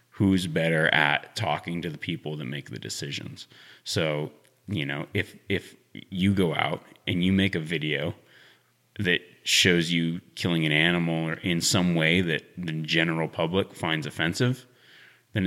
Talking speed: 160 wpm